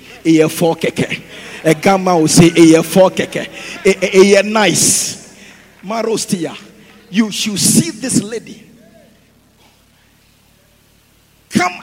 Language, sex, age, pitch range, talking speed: English, male, 50-69, 210-290 Hz, 105 wpm